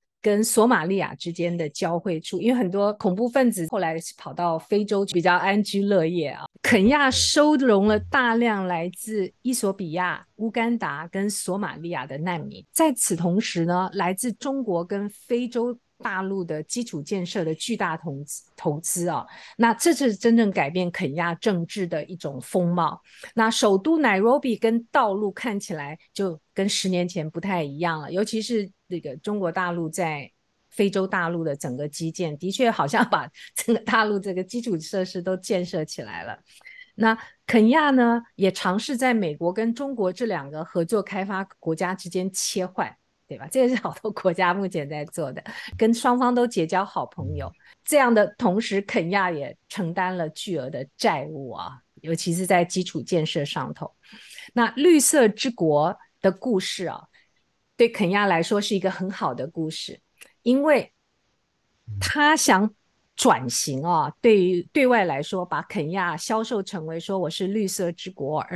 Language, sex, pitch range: Chinese, female, 170-225 Hz